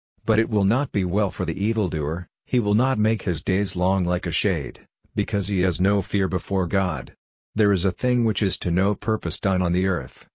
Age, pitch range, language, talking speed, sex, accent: 50-69, 90-105 Hz, English, 230 wpm, male, American